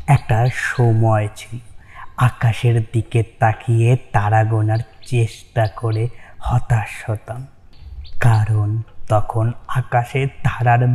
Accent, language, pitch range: native, Bengali, 115-130 Hz